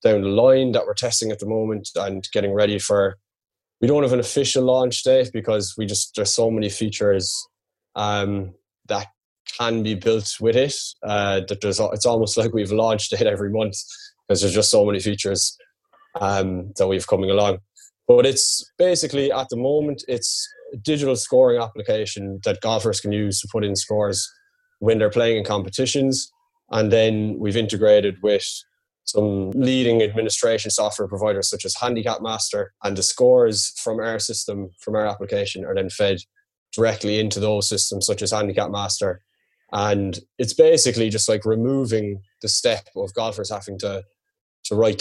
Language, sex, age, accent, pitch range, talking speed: English, male, 20-39, Irish, 105-135 Hz, 170 wpm